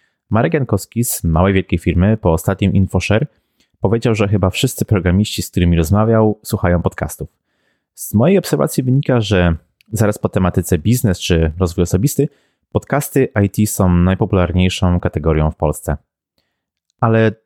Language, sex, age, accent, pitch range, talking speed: Polish, male, 30-49, native, 85-110 Hz, 135 wpm